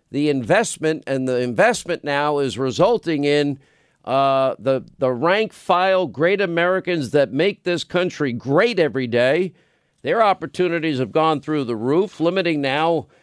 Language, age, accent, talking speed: English, 50-69, American, 145 wpm